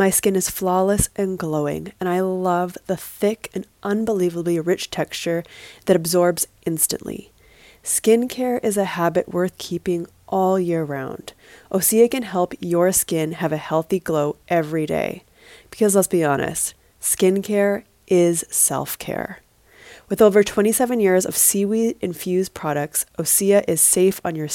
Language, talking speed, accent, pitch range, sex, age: English, 140 wpm, American, 170-205 Hz, female, 20-39